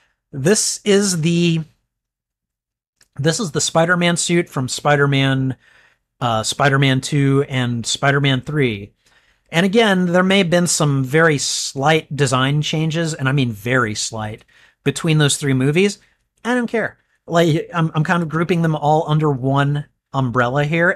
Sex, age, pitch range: male, 40-59, 130-175 Hz